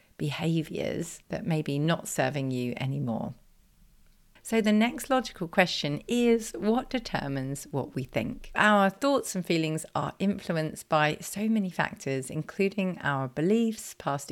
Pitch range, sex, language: 150-200 Hz, female, English